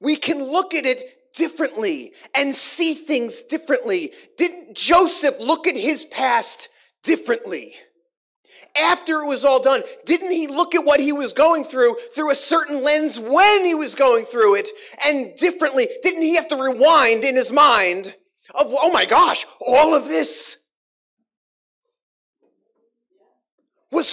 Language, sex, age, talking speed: English, male, 30-49, 145 wpm